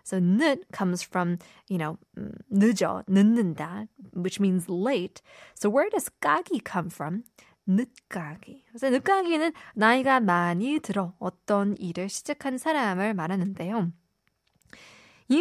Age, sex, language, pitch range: 20-39, female, Korean, 180-245 Hz